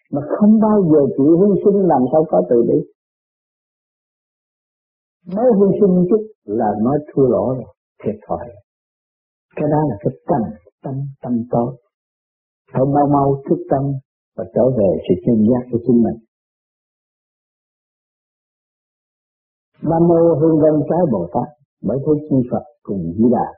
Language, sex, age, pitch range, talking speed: Vietnamese, male, 50-69, 125-175 Hz, 150 wpm